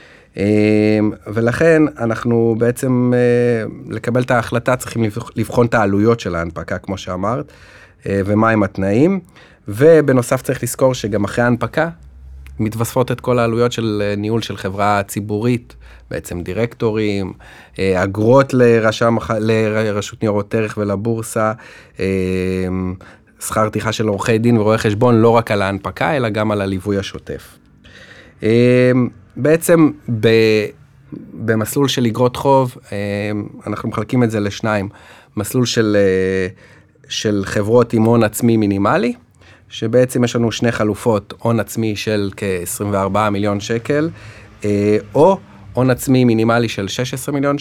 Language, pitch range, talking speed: Hebrew, 105-125 Hz, 125 wpm